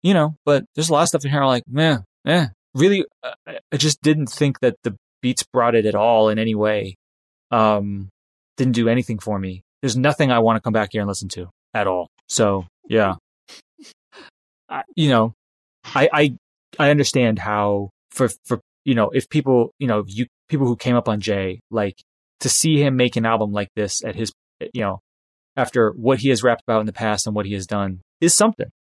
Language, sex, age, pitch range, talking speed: English, male, 20-39, 110-150 Hz, 210 wpm